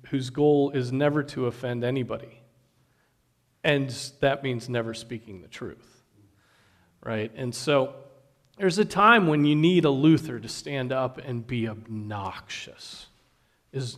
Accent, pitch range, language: American, 125-155 Hz, English